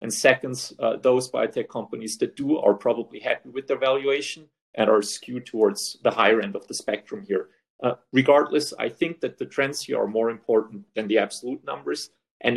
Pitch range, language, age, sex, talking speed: 120-145 Hz, English, 40-59, male, 190 wpm